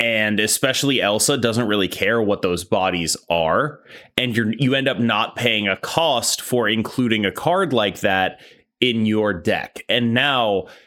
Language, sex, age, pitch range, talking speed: English, male, 20-39, 95-120 Hz, 160 wpm